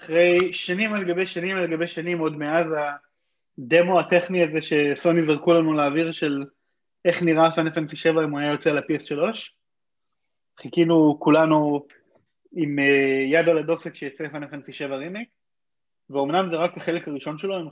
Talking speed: 150 wpm